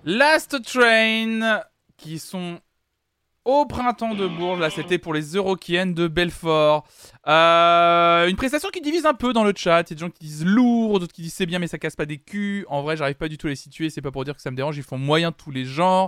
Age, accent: 20-39, French